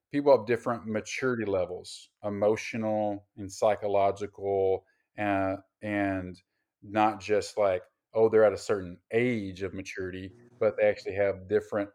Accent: American